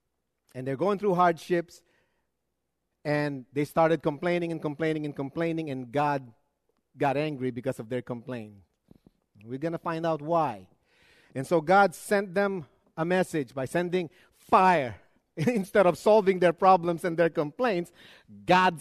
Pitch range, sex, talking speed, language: 145-200 Hz, male, 145 wpm, English